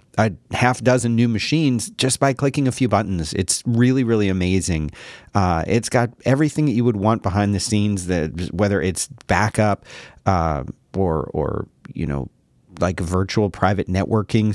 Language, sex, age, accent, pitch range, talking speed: English, male, 40-59, American, 90-115 Hz, 160 wpm